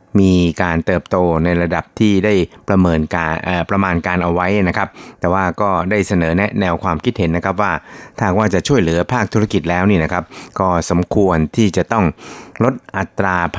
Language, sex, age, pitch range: Thai, male, 60-79, 85-105 Hz